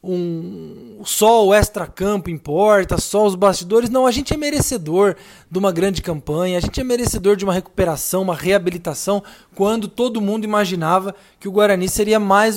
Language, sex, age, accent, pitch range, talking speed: Portuguese, male, 20-39, Brazilian, 180-215 Hz, 160 wpm